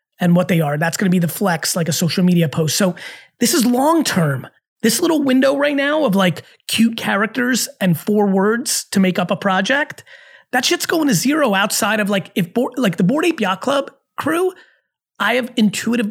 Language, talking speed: English, 205 wpm